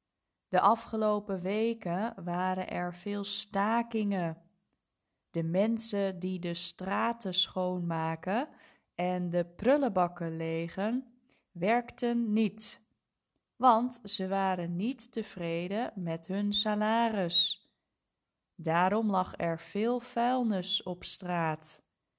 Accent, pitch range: Dutch, 175-235 Hz